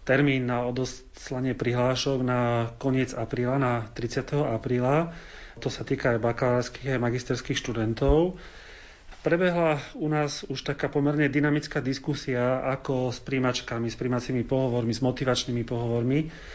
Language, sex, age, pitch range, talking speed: Slovak, male, 40-59, 125-145 Hz, 125 wpm